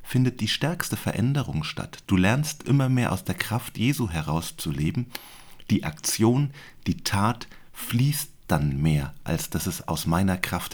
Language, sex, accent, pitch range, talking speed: German, male, German, 90-130 Hz, 150 wpm